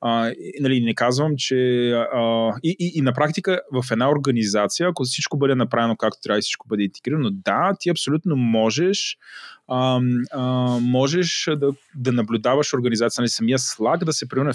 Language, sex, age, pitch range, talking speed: Bulgarian, male, 20-39, 115-145 Hz, 175 wpm